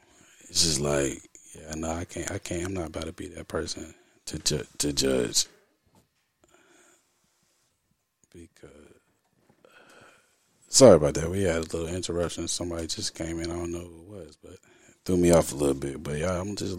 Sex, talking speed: male, 175 wpm